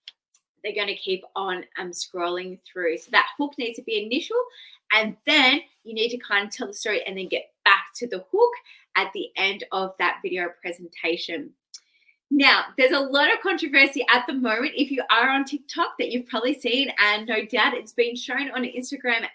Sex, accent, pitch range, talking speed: female, Australian, 205-280 Hz, 200 wpm